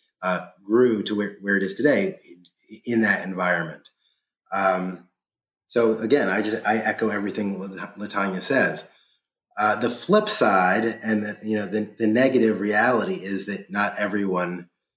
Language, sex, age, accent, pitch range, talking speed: English, male, 30-49, American, 95-110 Hz, 150 wpm